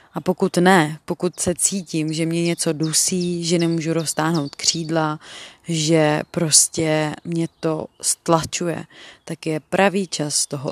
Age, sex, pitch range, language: 30-49, female, 160-175 Hz, Czech